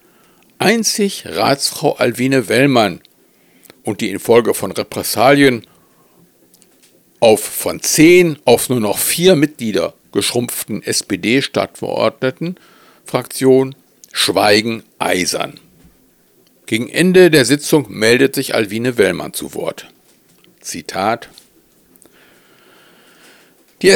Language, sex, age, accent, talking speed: German, male, 60-79, German, 85 wpm